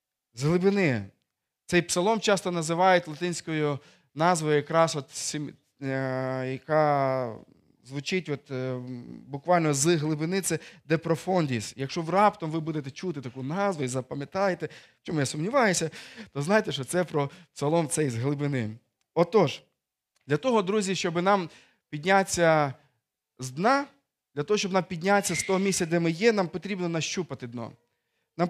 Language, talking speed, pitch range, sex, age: Ukrainian, 135 wpm, 150-195 Hz, male, 20-39